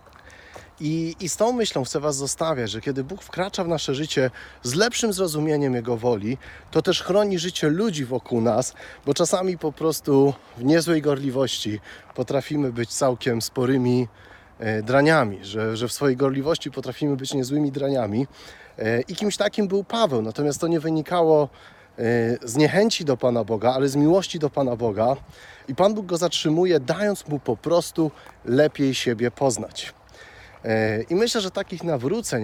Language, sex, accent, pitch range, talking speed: Polish, male, native, 115-160 Hz, 155 wpm